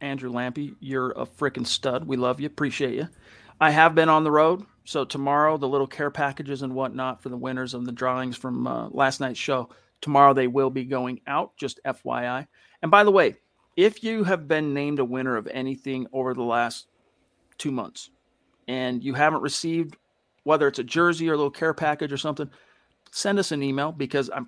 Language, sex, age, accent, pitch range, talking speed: English, male, 40-59, American, 130-160 Hz, 205 wpm